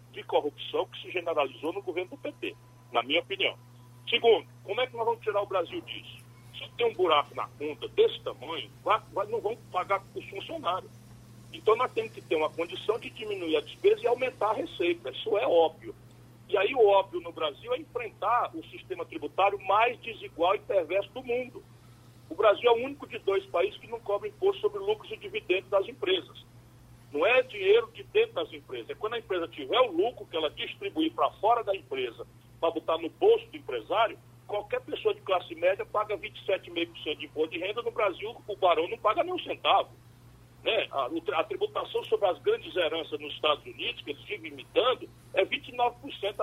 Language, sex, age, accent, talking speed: Portuguese, male, 40-59, Brazilian, 200 wpm